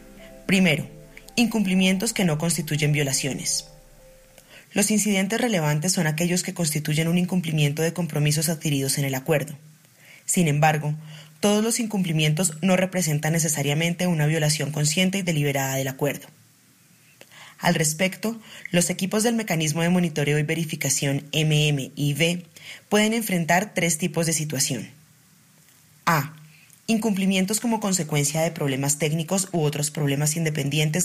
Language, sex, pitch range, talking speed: Spanish, female, 150-180 Hz, 125 wpm